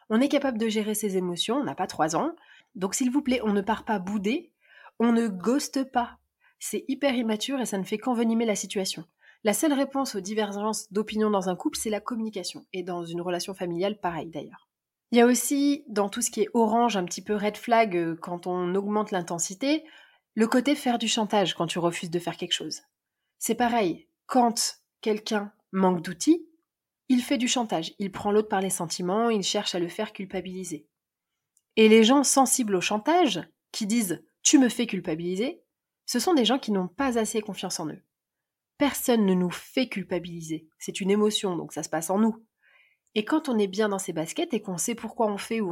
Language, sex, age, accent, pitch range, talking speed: French, female, 30-49, French, 190-245 Hz, 210 wpm